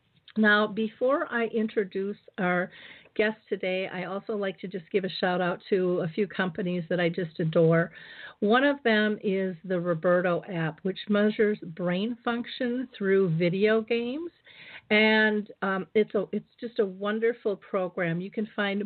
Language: English